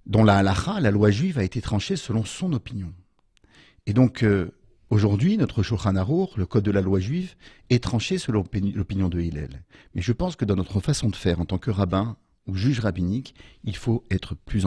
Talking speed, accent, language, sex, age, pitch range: 210 wpm, French, French, male, 50-69, 90-115 Hz